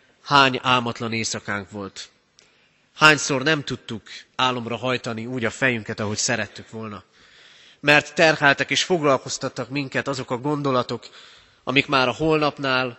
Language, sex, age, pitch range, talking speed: Hungarian, male, 30-49, 115-145 Hz, 125 wpm